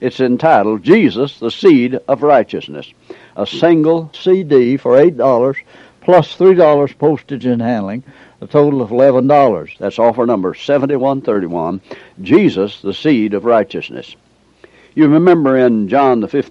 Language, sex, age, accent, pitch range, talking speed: English, male, 60-79, American, 115-150 Hz, 125 wpm